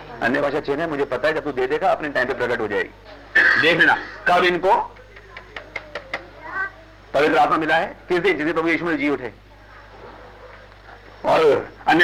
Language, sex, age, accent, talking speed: Hindi, male, 40-59, native, 165 wpm